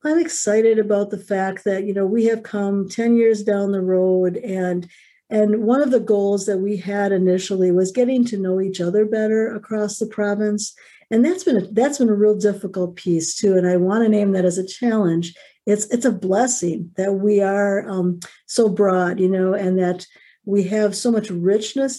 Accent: American